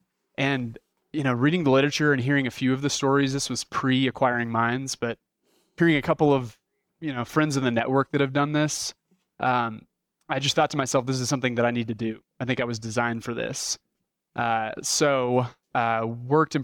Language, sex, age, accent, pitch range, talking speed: English, male, 30-49, American, 120-145 Hz, 210 wpm